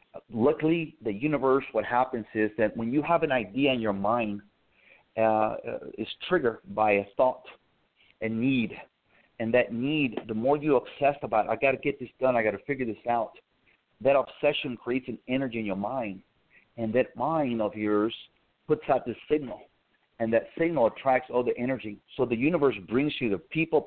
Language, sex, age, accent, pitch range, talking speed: English, male, 50-69, American, 110-140 Hz, 190 wpm